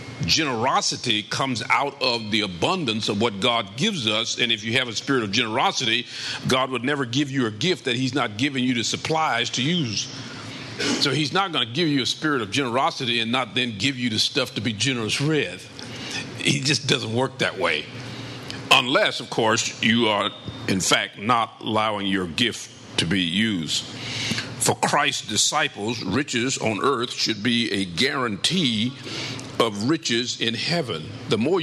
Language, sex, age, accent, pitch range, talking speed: English, male, 50-69, American, 115-135 Hz, 175 wpm